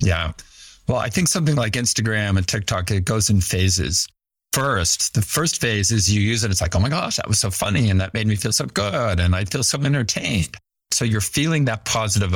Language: English